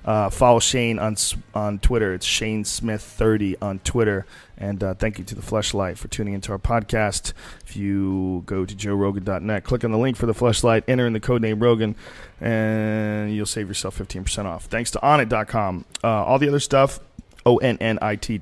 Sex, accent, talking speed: male, American, 185 wpm